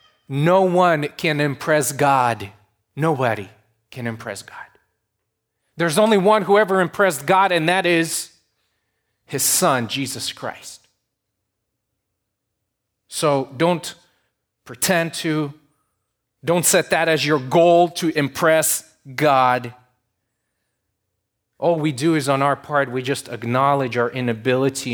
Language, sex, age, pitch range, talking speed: English, male, 30-49, 115-160 Hz, 115 wpm